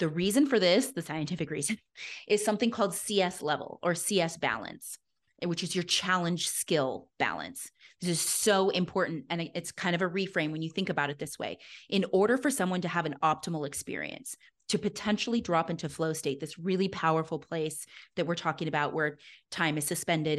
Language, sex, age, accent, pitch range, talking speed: English, female, 30-49, American, 155-200 Hz, 190 wpm